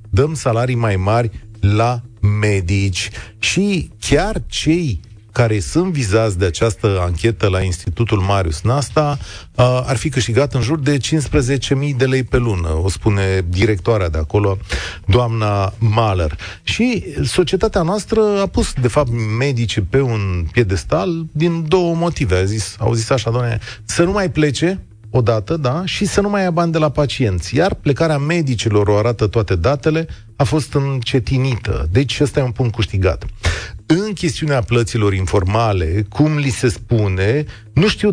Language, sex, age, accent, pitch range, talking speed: Romanian, male, 30-49, native, 105-155 Hz, 155 wpm